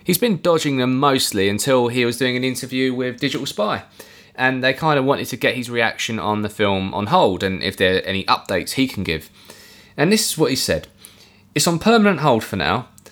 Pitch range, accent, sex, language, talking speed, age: 105-145 Hz, British, male, English, 225 wpm, 20-39